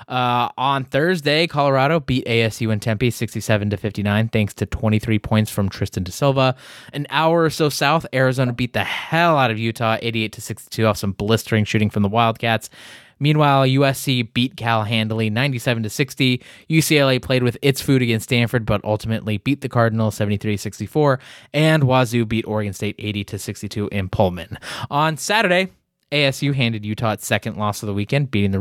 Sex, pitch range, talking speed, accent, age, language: male, 110-140 Hz, 180 wpm, American, 20-39, English